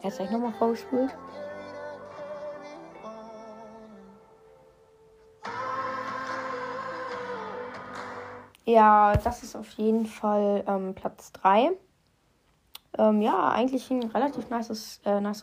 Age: 10-29